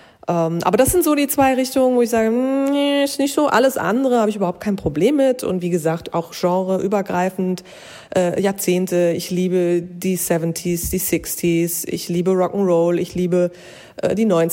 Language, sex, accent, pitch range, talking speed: German, female, German, 170-210 Hz, 160 wpm